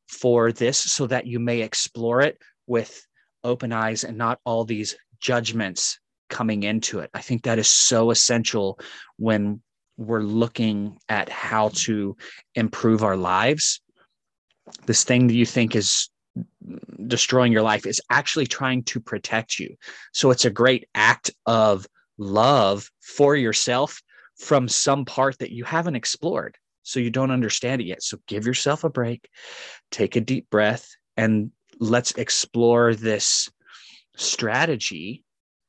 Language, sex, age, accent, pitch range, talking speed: English, male, 30-49, American, 110-125 Hz, 145 wpm